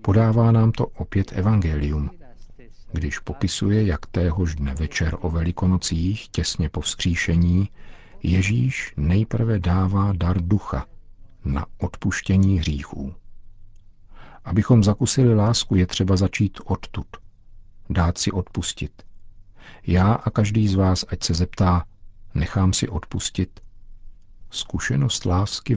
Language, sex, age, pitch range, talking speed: Czech, male, 50-69, 90-105 Hz, 110 wpm